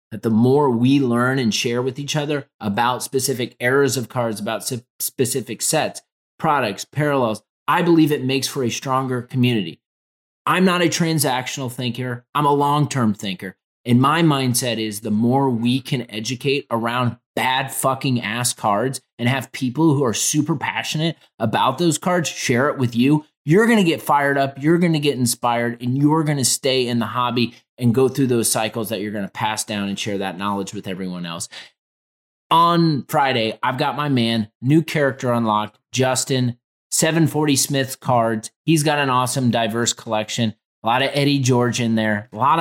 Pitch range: 110-140 Hz